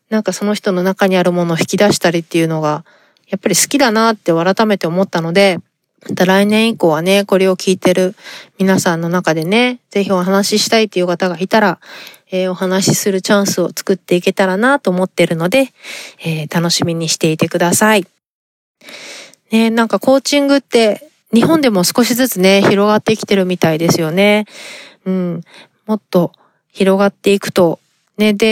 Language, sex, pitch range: Japanese, female, 175-215 Hz